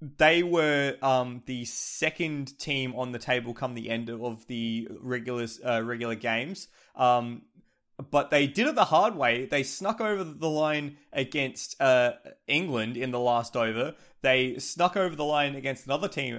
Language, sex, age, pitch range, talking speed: English, male, 20-39, 125-150 Hz, 165 wpm